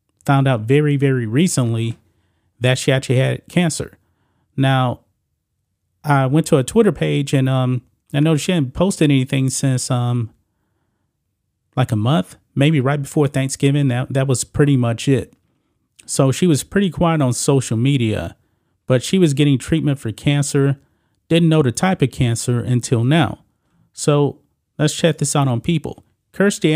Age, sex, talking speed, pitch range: 40-59, male, 160 wpm, 120-150 Hz